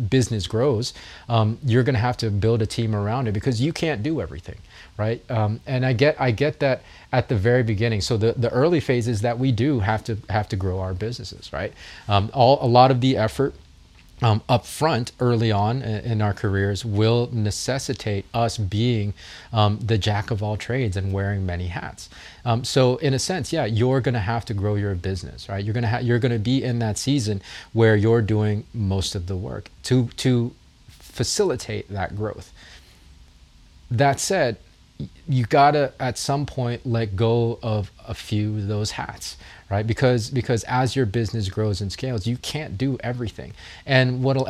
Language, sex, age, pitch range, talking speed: English, male, 30-49, 105-125 Hz, 195 wpm